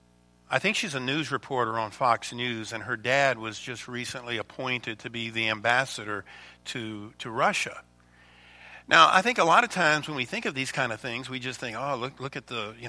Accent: American